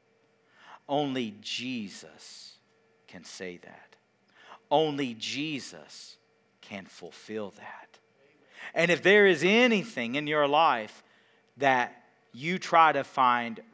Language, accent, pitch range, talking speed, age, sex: English, American, 125-185 Hz, 100 wpm, 50-69, male